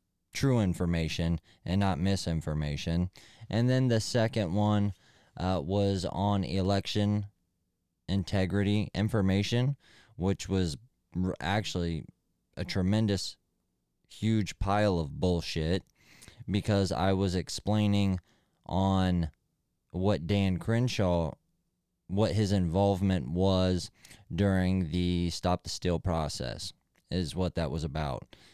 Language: English